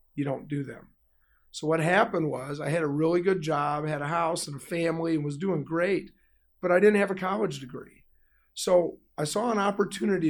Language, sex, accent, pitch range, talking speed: English, male, American, 150-190 Hz, 210 wpm